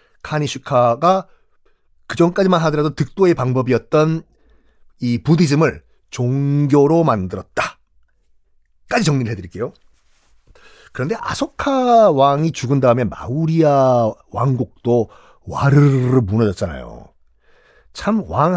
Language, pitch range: Korean, 120-175 Hz